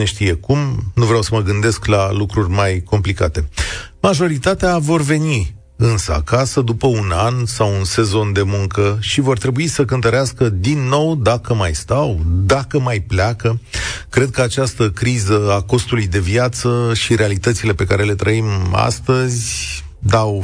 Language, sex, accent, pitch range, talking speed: Romanian, male, native, 95-125 Hz, 150 wpm